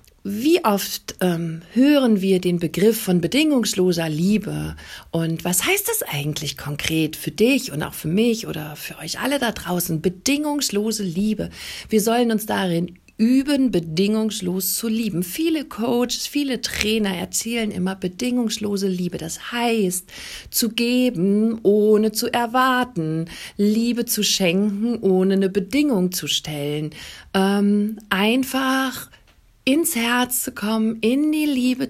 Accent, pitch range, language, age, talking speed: German, 185-240 Hz, German, 40-59, 130 wpm